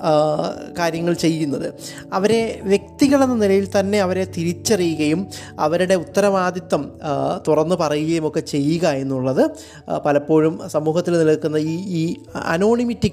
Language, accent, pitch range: Malayalam, native, 155-205 Hz